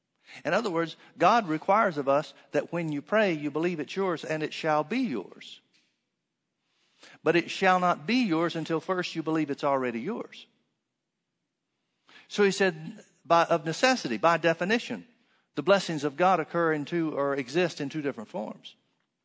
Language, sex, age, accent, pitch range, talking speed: English, male, 60-79, American, 155-200 Hz, 170 wpm